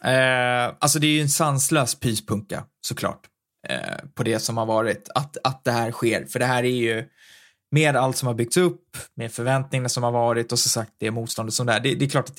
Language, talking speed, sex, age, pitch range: Swedish, 225 wpm, male, 20-39, 120-135 Hz